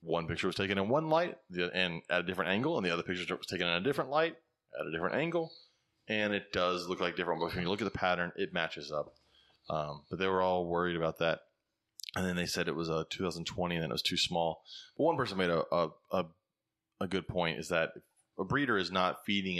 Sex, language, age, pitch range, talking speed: male, English, 20-39, 85-95 Hz, 240 wpm